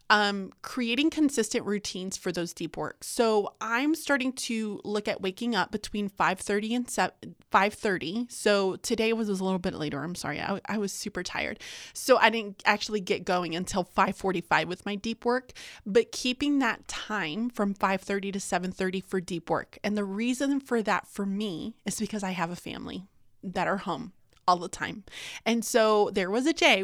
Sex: female